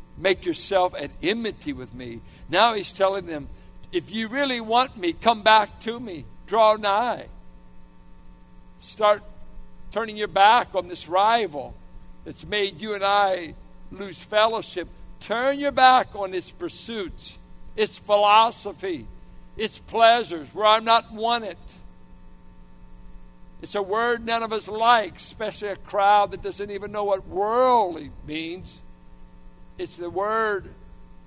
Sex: male